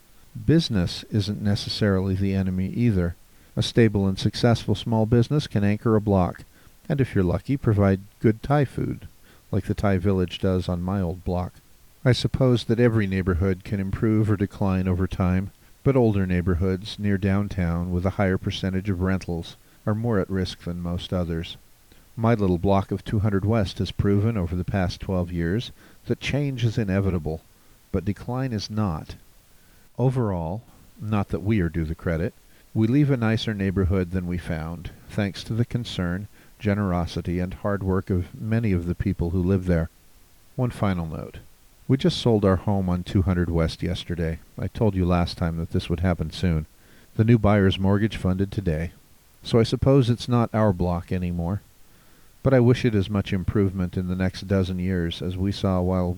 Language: English